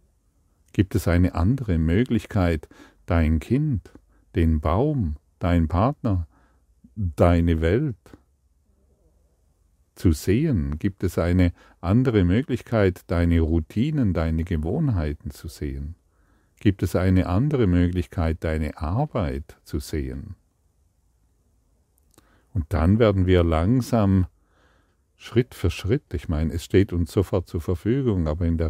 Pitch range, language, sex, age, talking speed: 80-100 Hz, German, male, 50-69, 115 wpm